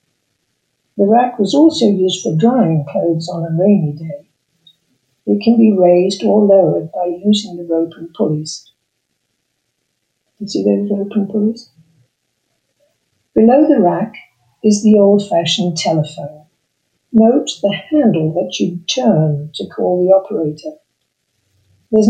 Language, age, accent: English, 60-79, British